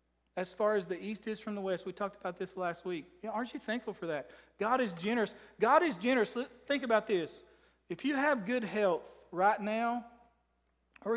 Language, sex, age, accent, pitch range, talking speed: English, male, 40-59, American, 190-235 Hz, 205 wpm